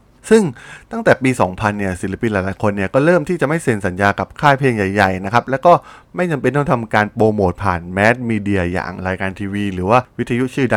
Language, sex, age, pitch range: Thai, male, 20-39, 100-130 Hz